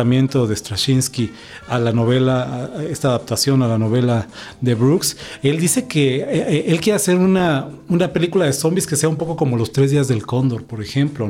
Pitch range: 125-160 Hz